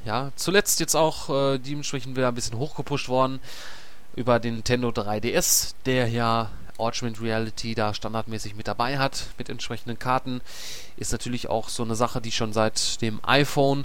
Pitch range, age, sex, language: 110-135 Hz, 30-49, male, German